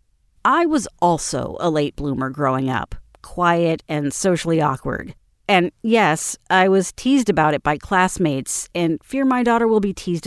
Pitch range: 160-230 Hz